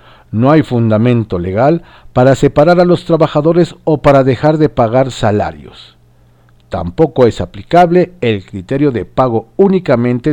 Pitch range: 95-145 Hz